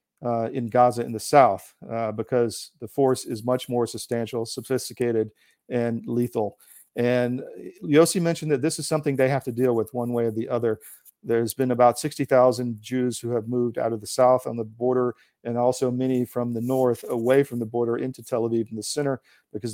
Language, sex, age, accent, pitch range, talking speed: English, male, 50-69, American, 120-130 Hz, 200 wpm